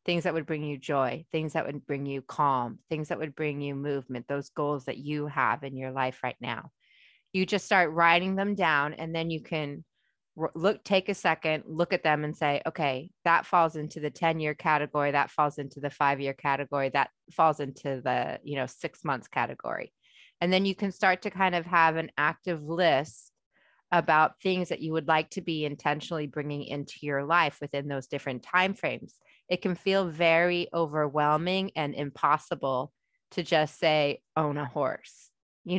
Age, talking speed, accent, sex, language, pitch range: 30-49, 185 wpm, American, female, English, 145-180 Hz